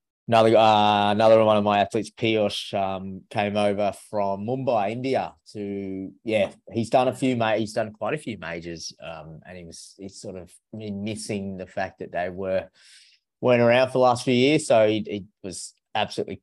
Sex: male